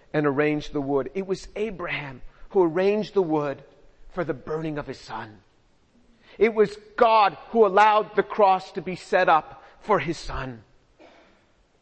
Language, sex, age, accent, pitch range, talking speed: English, male, 40-59, American, 160-230 Hz, 155 wpm